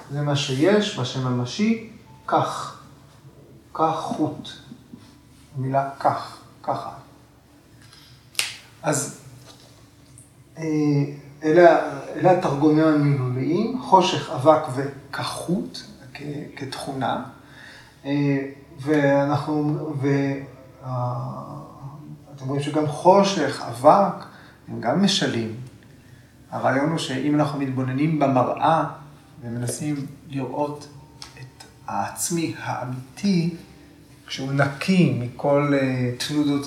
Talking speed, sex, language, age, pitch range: 70 wpm, male, Hebrew, 30-49, 130-155 Hz